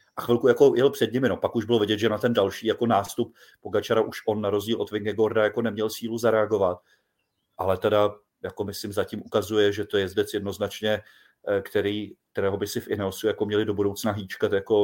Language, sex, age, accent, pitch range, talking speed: Czech, male, 30-49, native, 105-125 Hz, 205 wpm